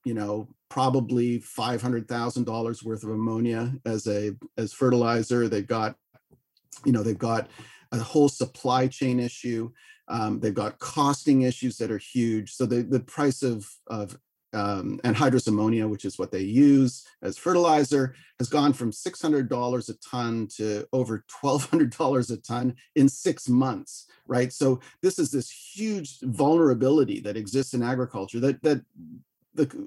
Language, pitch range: English, 115-135 Hz